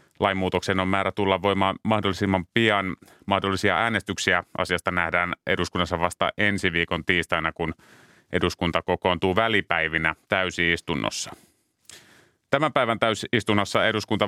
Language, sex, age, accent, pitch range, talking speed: Finnish, male, 30-49, native, 90-105 Hz, 110 wpm